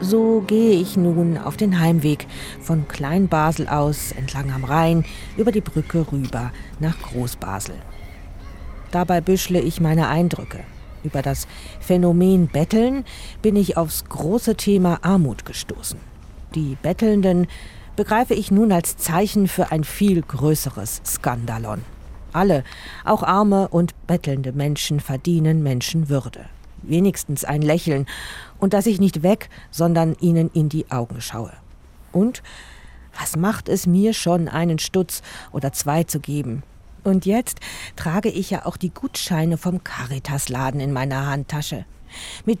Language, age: German, 40-59